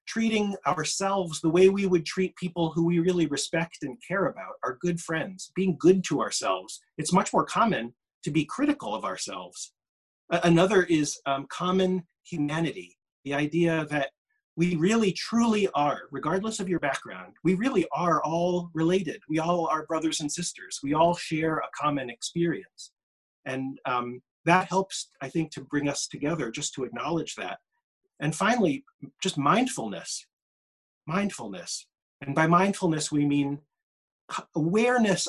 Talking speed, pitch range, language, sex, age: 150 wpm, 145-185 Hz, English, male, 30-49